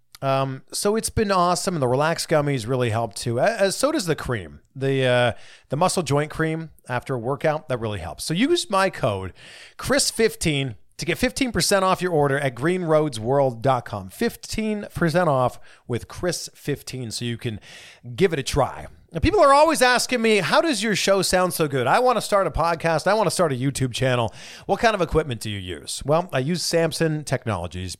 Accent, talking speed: American, 195 wpm